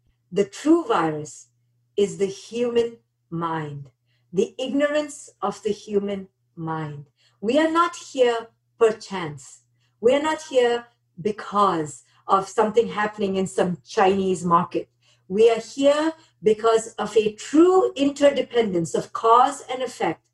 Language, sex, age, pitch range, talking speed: English, female, 50-69, 165-245 Hz, 125 wpm